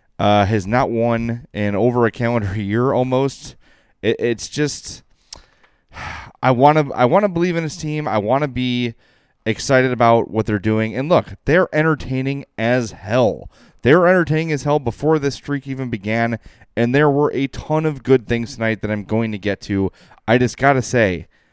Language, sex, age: English, male, 20-39